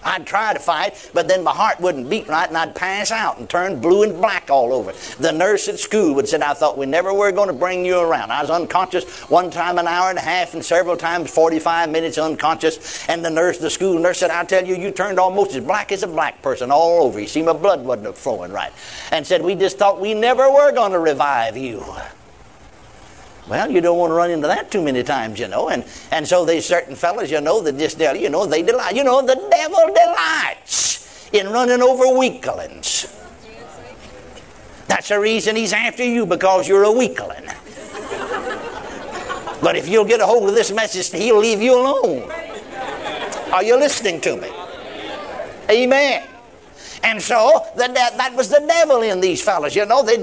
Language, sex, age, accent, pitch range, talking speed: English, male, 60-79, American, 175-250 Hz, 205 wpm